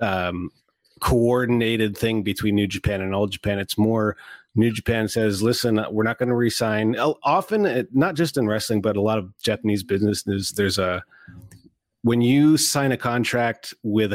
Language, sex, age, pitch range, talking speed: English, male, 30-49, 100-120 Hz, 175 wpm